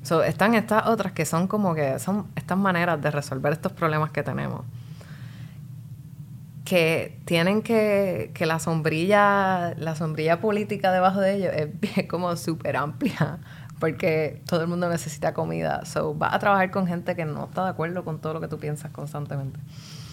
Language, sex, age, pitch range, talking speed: English, female, 20-39, 145-175 Hz, 175 wpm